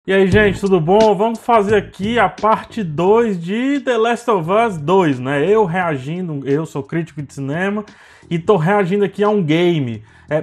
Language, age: Portuguese, 20-39